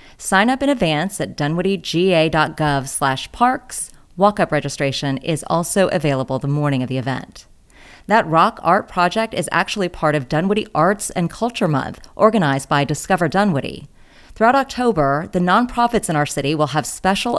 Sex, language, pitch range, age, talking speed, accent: female, English, 150-205 Hz, 30-49, 155 wpm, American